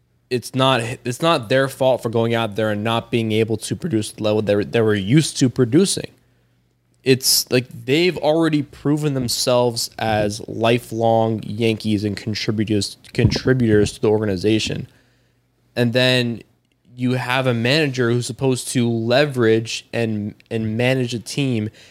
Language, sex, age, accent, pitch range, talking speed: English, male, 20-39, American, 110-130 Hz, 150 wpm